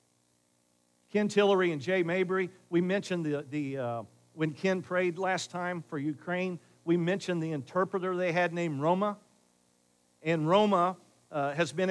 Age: 50-69